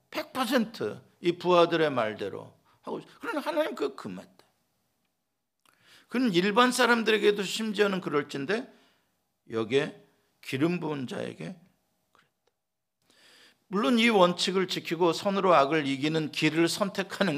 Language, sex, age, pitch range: Korean, male, 50-69, 135-215 Hz